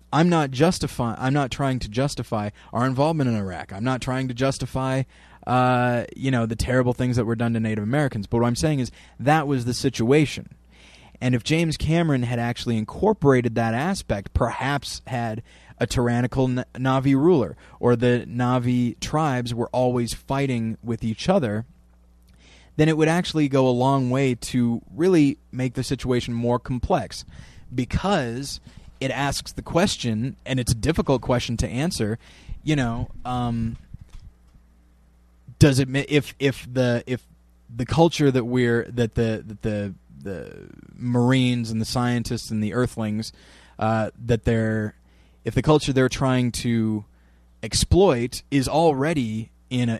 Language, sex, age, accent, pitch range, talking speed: English, male, 20-39, American, 115-135 Hz, 155 wpm